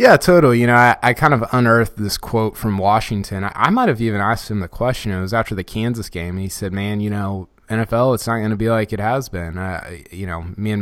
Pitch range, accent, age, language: 100-120 Hz, American, 20-39, English